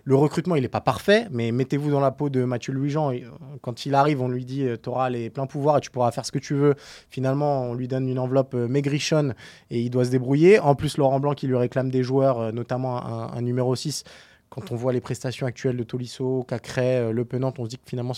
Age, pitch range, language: 20-39, 125-155 Hz, French